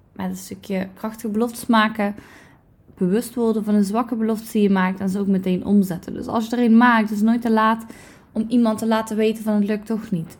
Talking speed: 240 wpm